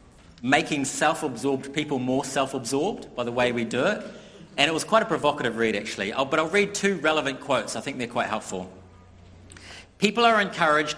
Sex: male